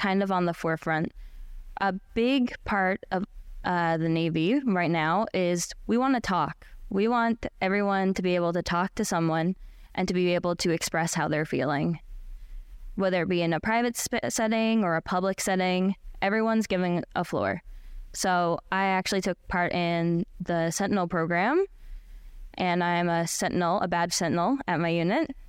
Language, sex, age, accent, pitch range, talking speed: English, female, 10-29, American, 170-200 Hz, 175 wpm